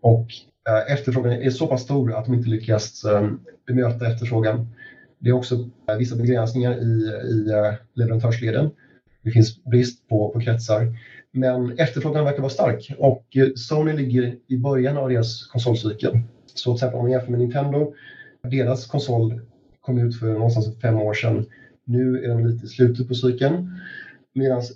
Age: 30-49